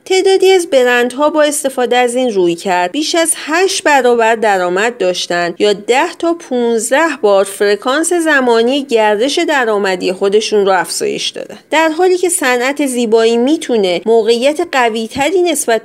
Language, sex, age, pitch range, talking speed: Persian, female, 30-49, 200-285 Hz, 135 wpm